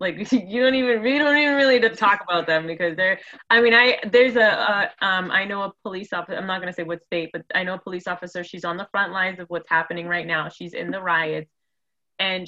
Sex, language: female, English